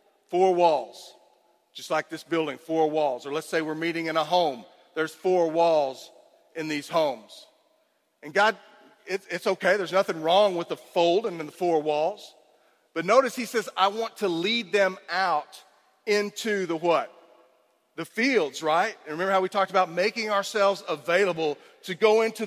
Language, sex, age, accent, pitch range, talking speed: English, male, 40-59, American, 175-220 Hz, 170 wpm